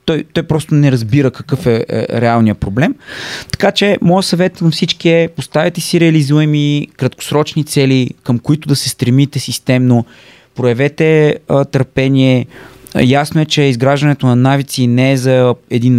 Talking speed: 150 wpm